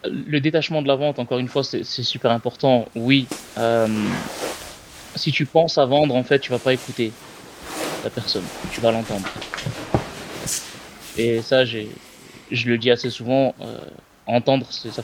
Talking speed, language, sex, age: 170 wpm, French, male, 30-49